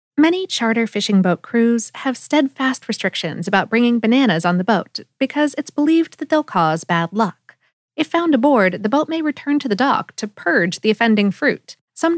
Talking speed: 185 wpm